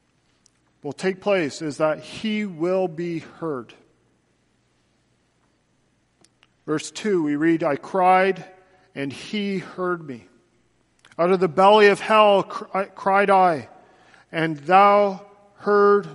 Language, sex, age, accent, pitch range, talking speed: English, male, 40-59, American, 155-185 Hz, 110 wpm